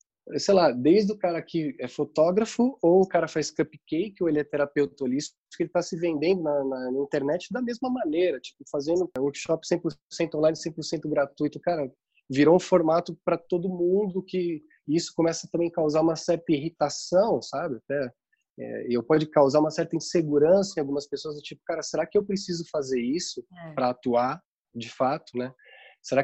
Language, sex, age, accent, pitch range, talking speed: Portuguese, male, 20-39, Brazilian, 135-170 Hz, 180 wpm